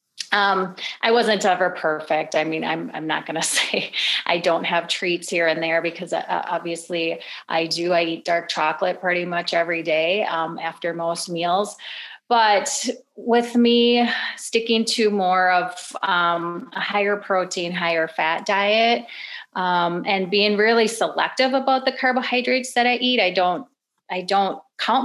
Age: 30-49